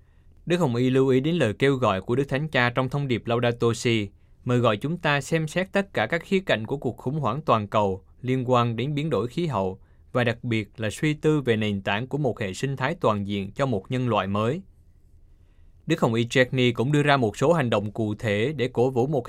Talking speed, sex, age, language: 250 wpm, male, 20-39, Vietnamese